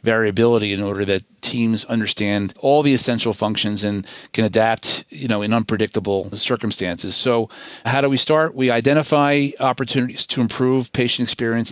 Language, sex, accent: English, male, American